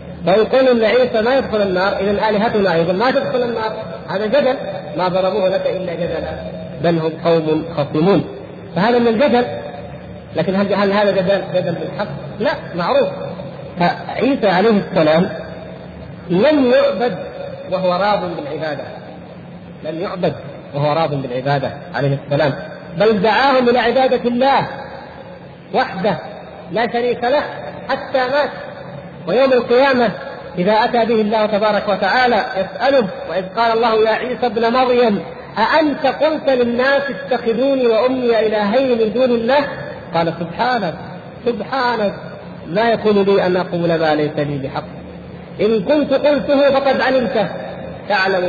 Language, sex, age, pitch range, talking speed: Arabic, male, 50-69, 170-245 Hz, 130 wpm